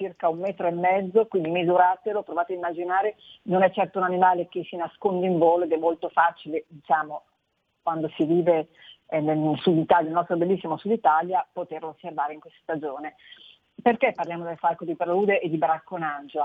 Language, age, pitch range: Italian, 40-59, 160-200 Hz